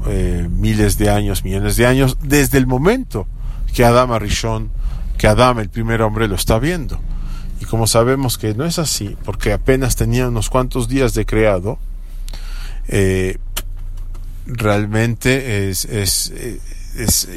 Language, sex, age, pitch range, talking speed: English, male, 40-59, 95-120 Hz, 145 wpm